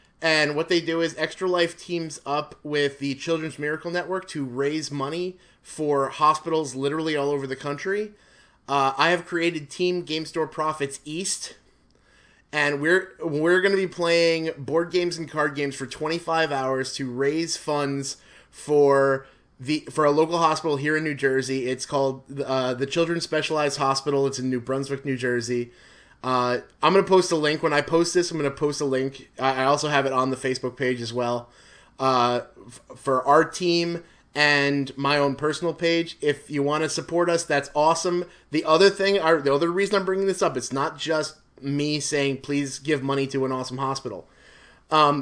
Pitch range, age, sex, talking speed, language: 135-165 Hz, 20-39, male, 190 wpm, English